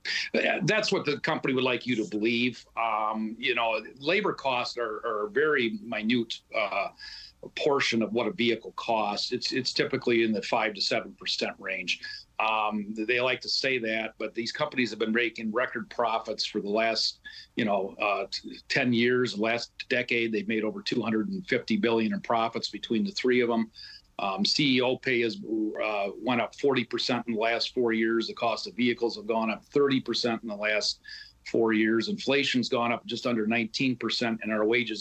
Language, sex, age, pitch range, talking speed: English, male, 40-59, 110-125 Hz, 185 wpm